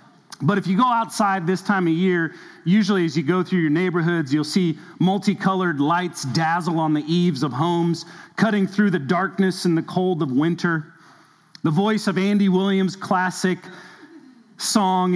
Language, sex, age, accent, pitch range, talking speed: English, male, 40-59, American, 165-195 Hz, 165 wpm